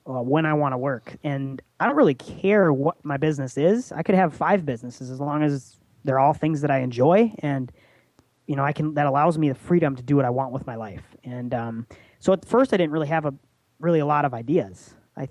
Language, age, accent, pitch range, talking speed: English, 20-39, American, 130-160 Hz, 245 wpm